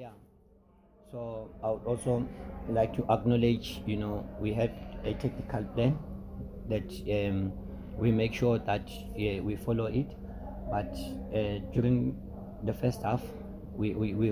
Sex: male